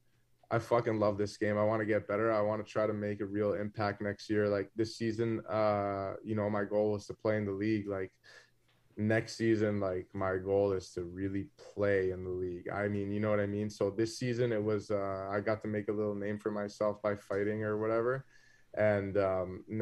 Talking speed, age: 225 wpm, 20-39